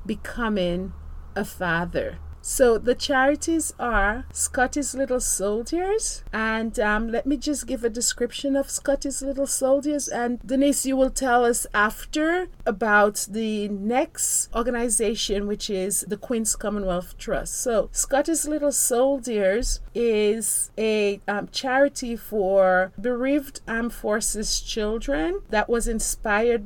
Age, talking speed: 40-59, 125 wpm